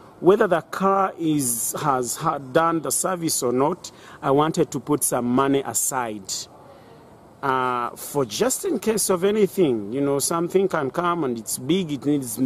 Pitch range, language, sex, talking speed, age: 135-175 Hz, English, male, 170 wpm, 40-59